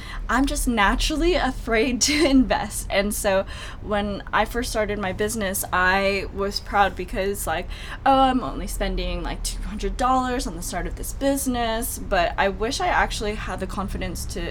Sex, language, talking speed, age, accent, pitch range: female, English, 165 wpm, 20-39, American, 190-235 Hz